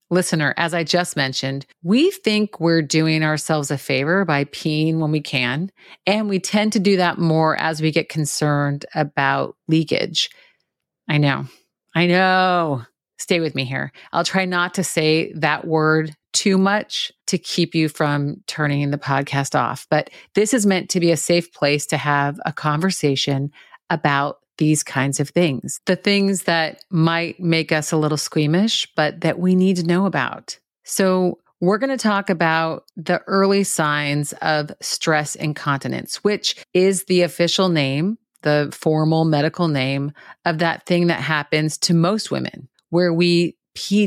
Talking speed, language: 165 wpm, English